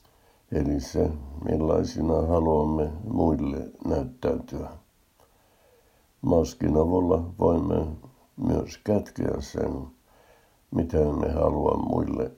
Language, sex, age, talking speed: Finnish, male, 60-79, 80 wpm